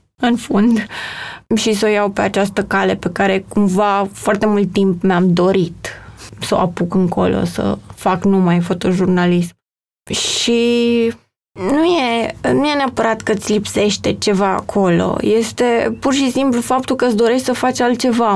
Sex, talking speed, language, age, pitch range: female, 150 wpm, Romanian, 20-39, 195-245 Hz